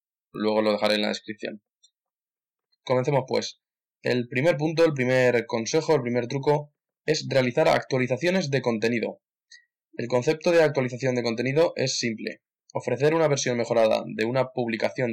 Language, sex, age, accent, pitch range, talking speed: Spanish, male, 20-39, Spanish, 115-140 Hz, 145 wpm